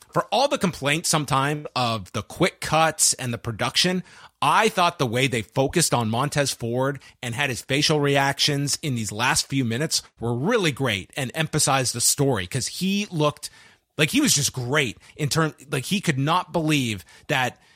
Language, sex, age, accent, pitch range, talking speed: English, male, 30-49, American, 125-160 Hz, 180 wpm